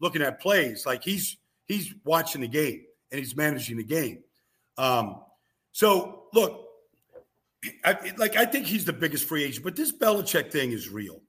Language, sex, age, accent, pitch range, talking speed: English, male, 50-69, American, 155-215 Hz, 170 wpm